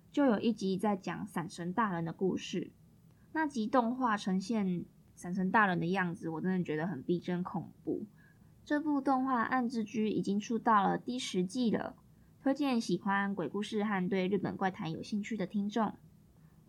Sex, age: female, 20-39